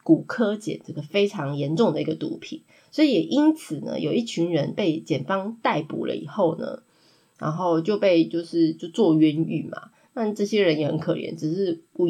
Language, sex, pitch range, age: Chinese, female, 165-230 Hz, 20-39